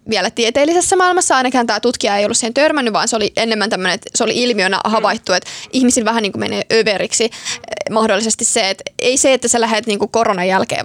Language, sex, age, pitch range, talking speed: Finnish, female, 20-39, 225-280 Hz, 215 wpm